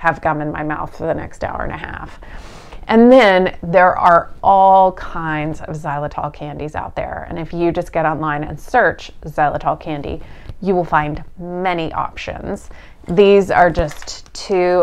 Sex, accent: female, American